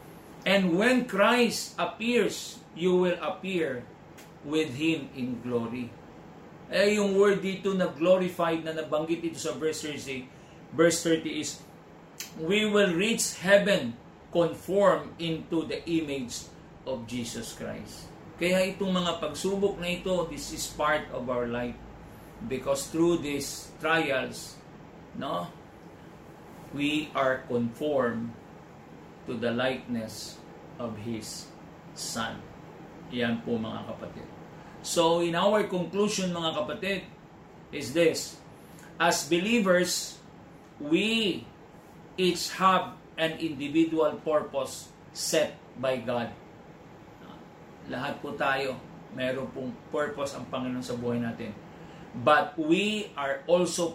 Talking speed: 110 wpm